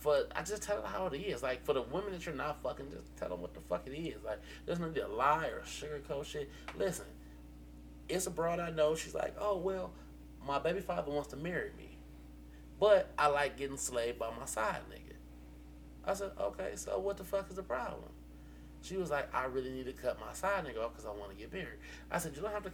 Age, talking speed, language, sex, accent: 20-39, 245 wpm, English, male, American